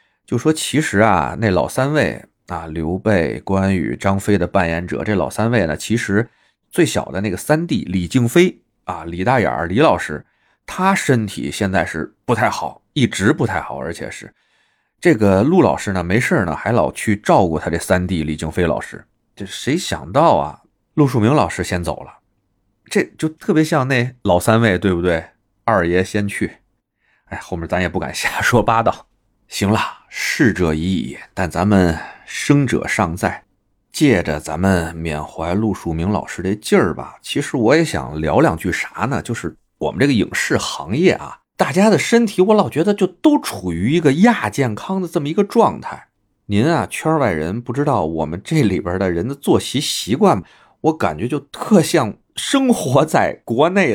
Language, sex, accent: Chinese, male, native